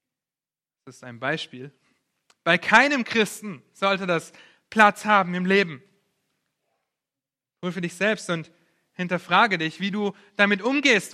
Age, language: 30-49, German